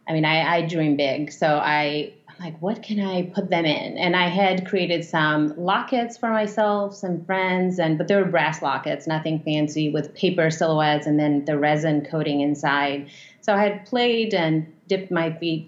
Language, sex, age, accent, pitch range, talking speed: English, female, 30-49, American, 160-210 Hz, 190 wpm